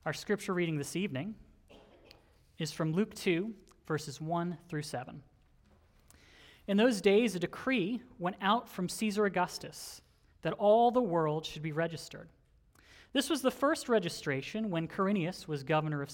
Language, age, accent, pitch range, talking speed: English, 30-49, American, 145-205 Hz, 150 wpm